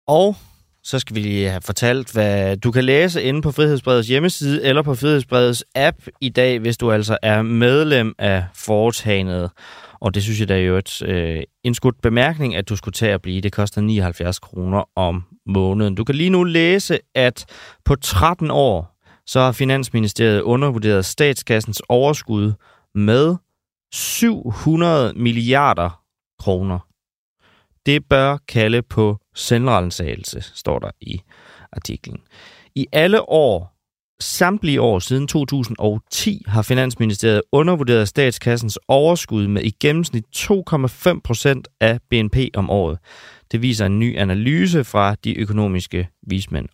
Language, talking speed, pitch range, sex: Danish, 140 wpm, 100-140 Hz, male